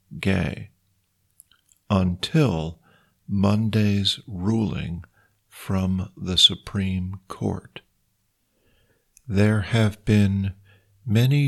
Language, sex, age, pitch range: Thai, male, 50-69, 95-110 Hz